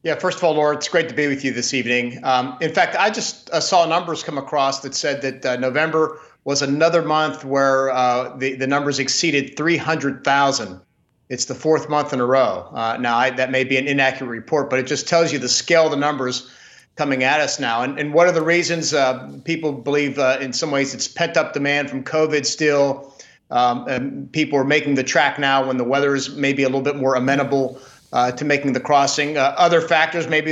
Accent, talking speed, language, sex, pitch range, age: American, 225 wpm, English, male, 135-160 Hz, 40-59